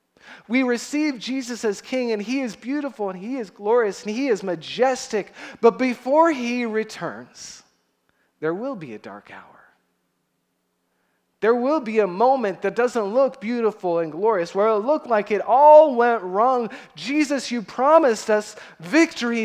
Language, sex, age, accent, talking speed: English, male, 30-49, American, 155 wpm